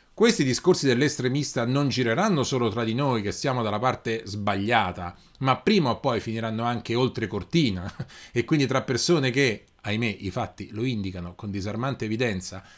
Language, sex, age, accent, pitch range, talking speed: Italian, male, 30-49, native, 110-150 Hz, 165 wpm